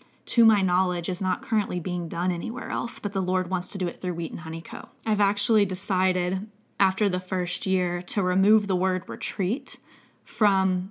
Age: 10-29